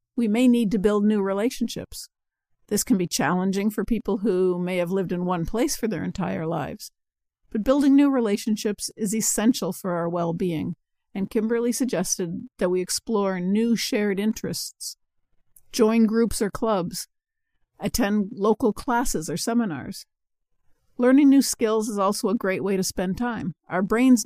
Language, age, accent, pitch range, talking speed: English, 50-69, American, 190-235 Hz, 160 wpm